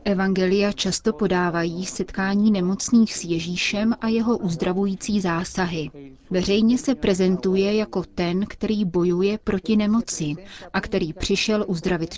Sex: female